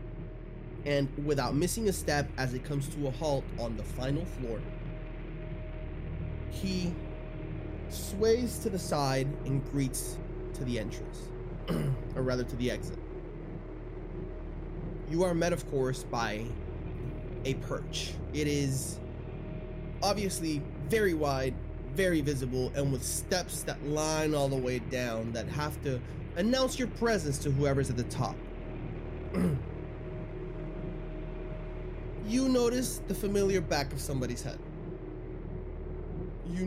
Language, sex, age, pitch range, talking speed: English, male, 20-39, 120-170 Hz, 120 wpm